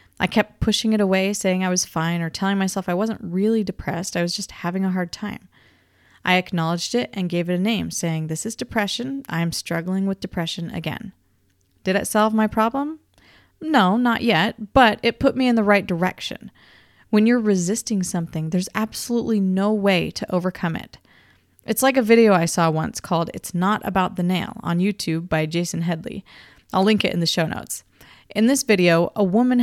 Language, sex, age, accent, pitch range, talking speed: English, female, 30-49, American, 175-220 Hz, 200 wpm